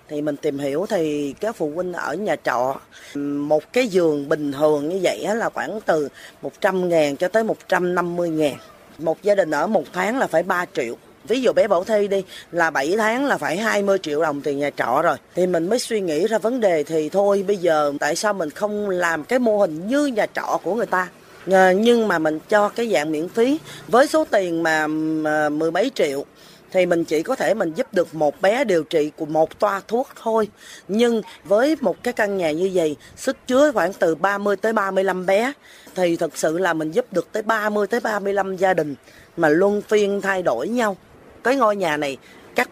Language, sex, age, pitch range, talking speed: Vietnamese, female, 20-39, 160-215 Hz, 215 wpm